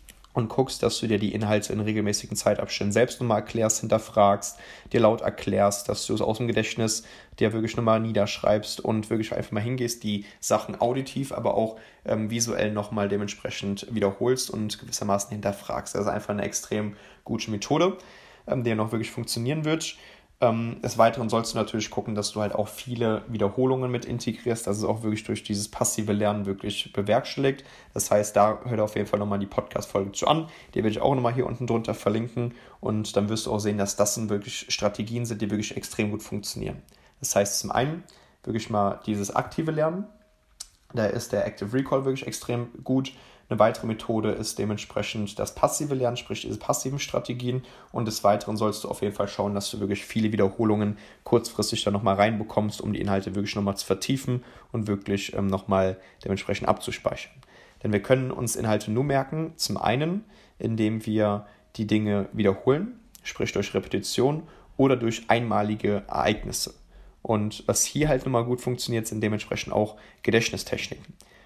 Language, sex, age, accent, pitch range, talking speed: German, male, 20-39, German, 105-120 Hz, 180 wpm